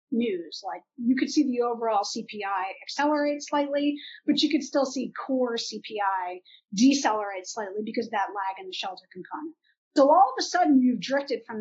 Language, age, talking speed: English, 40-59, 180 wpm